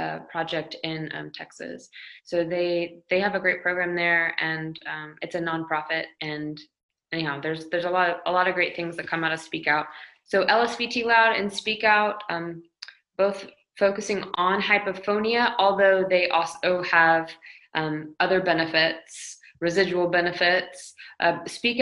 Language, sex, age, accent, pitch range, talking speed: English, female, 20-39, American, 165-200 Hz, 155 wpm